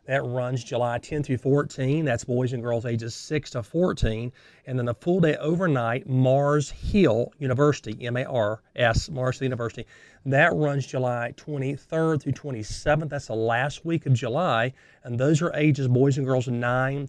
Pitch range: 115-145 Hz